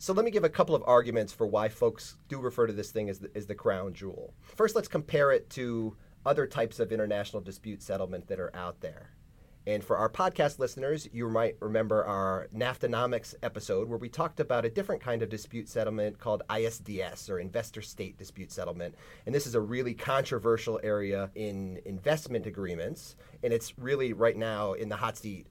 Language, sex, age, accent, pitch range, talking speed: English, male, 30-49, American, 105-150 Hz, 195 wpm